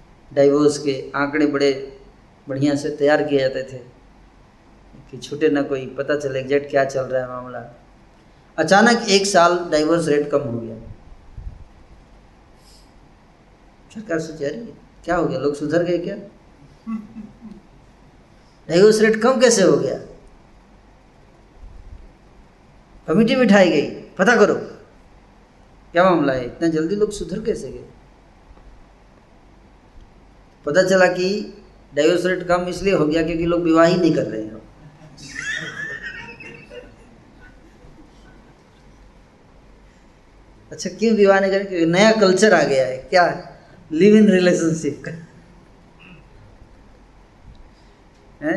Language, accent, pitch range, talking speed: Hindi, native, 130-180 Hz, 115 wpm